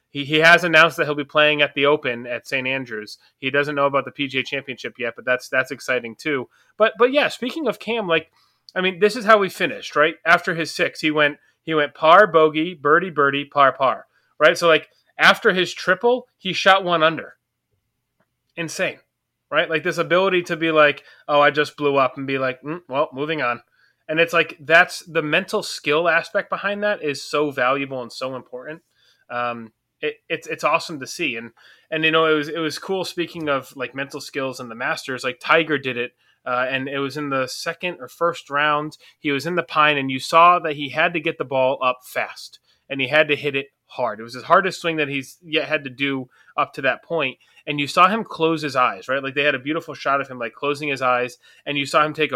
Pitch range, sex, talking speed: 135-165 Hz, male, 235 wpm